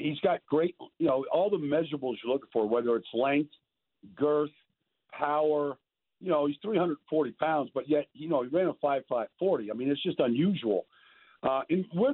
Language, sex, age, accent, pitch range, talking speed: English, male, 50-69, American, 145-180 Hz, 190 wpm